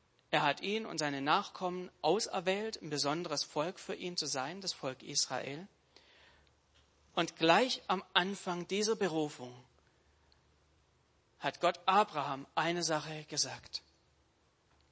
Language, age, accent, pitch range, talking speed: German, 40-59, German, 135-180 Hz, 115 wpm